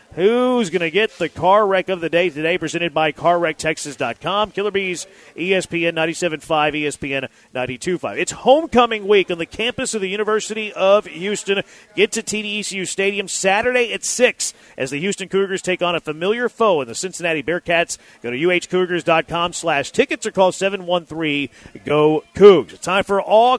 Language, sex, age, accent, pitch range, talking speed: English, male, 40-59, American, 160-200 Hz, 160 wpm